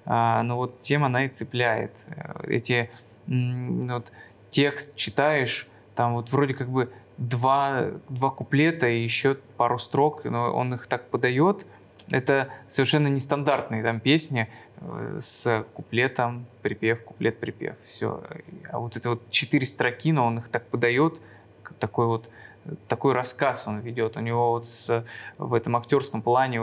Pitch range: 115-140 Hz